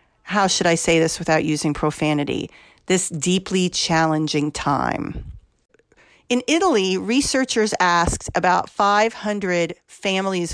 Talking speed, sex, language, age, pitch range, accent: 110 wpm, female, English, 40-59, 175-235 Hz, American